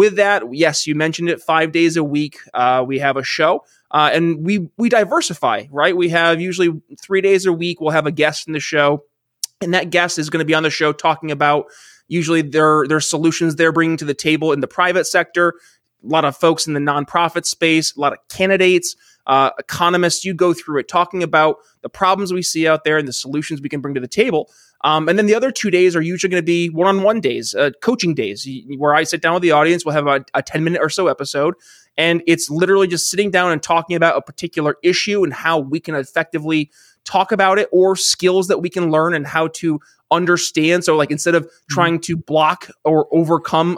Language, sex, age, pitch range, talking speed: English, male, 20-39, 155-180 Hz, 230 wpm